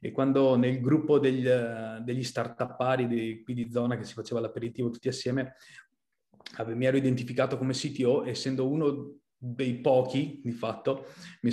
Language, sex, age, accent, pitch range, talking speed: Italian, male, 30-49, native, 115-135 Hz, 150 wpm